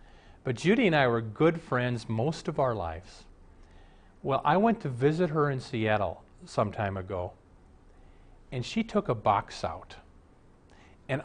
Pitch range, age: 105-150 Hz, 40-59